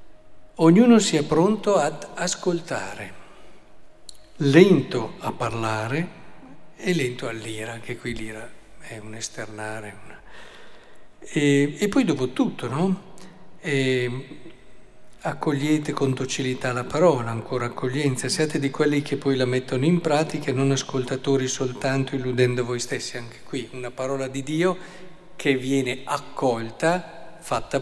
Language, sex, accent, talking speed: Italian, male, native, 125 wpm